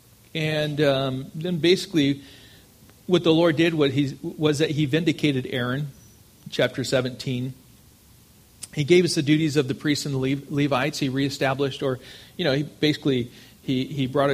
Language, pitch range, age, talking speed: English, 130-160 Hz, 40-59, 160 wpm